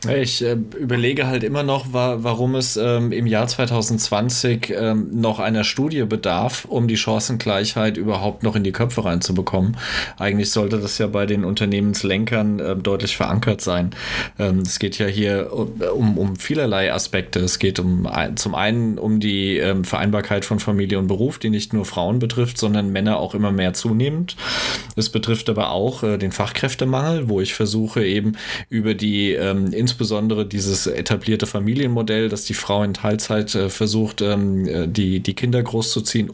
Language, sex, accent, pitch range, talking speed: German, male, German, 100-115 Hz, 150 wpm